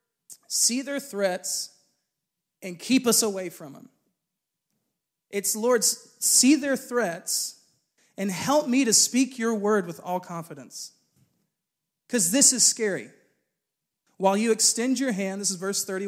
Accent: American